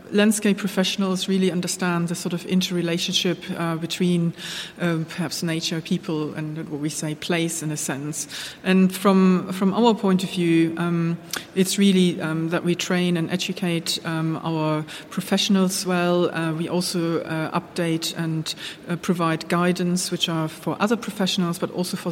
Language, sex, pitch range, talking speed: English, female, 165-185 Hz, 160 wpm